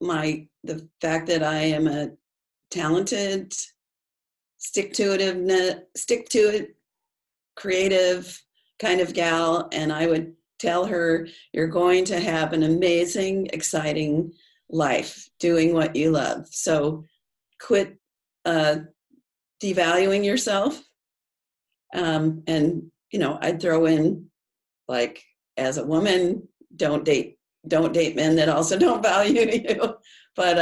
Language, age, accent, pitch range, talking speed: English, 40-59, American, 155-180 Hz, 120 wpm